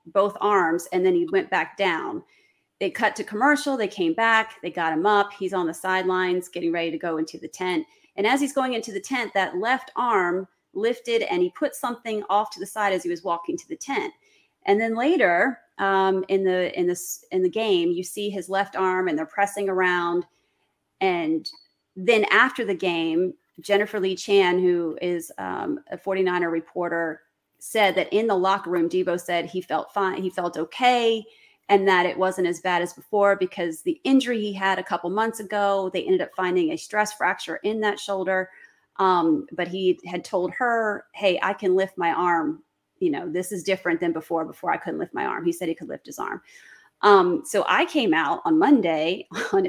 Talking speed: 205 wpm